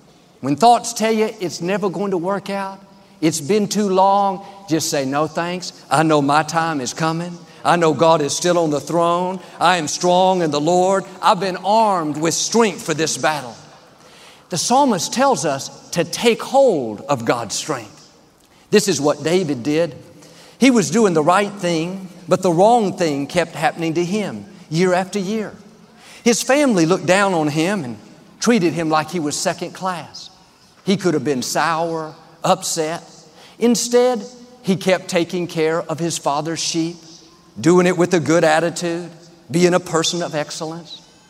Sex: male